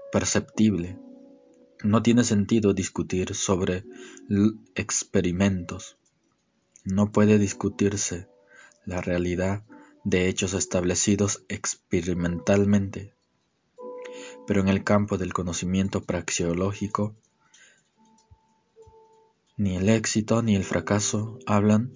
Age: 20-39